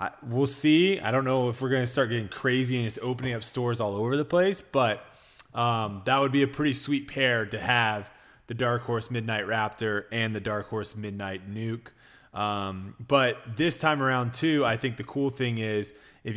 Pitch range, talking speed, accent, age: 105-130 Hz, 205 wpm, American, 20-39